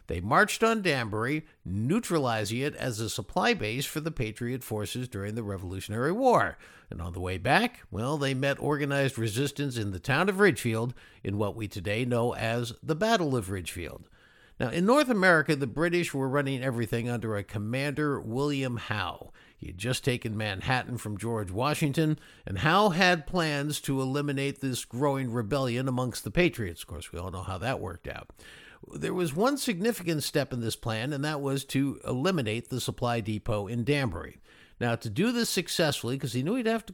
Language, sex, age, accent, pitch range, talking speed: English, male, 50-69, American, 110-155 Hz, 185 wpm